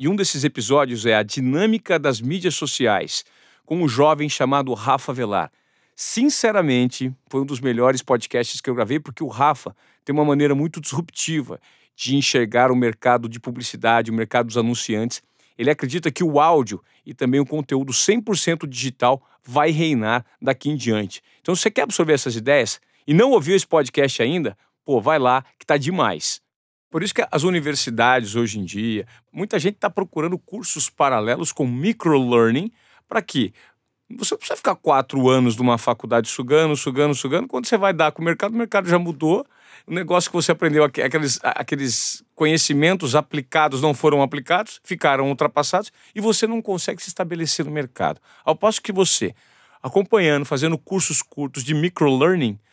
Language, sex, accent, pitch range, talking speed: Portuguese, male, Brazilian, 130-170 Hz, 170 wpm